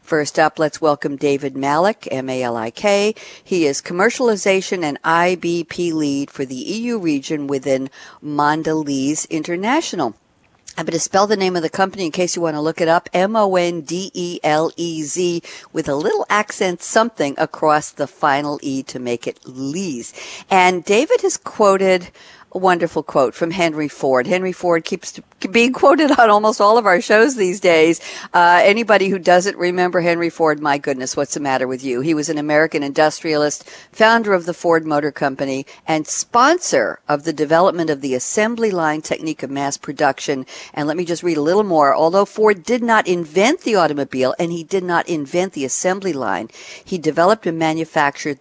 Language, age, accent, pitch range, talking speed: English, 50-69, American, 150-190 Hz, 170 wpm